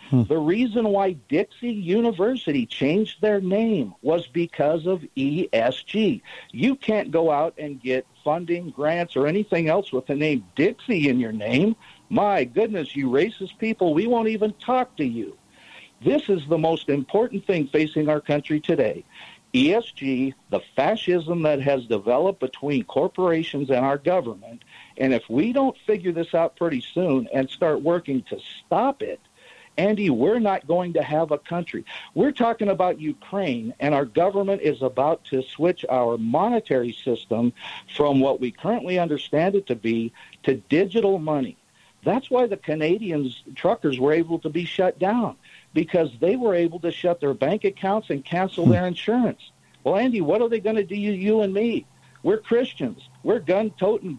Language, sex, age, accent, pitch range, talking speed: English, male, 50-69, American, 150-215 Hz, 165 wpm